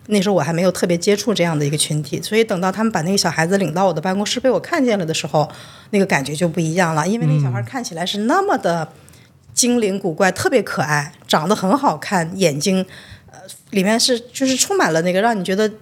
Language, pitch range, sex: Chinese, 165-210 Hz, female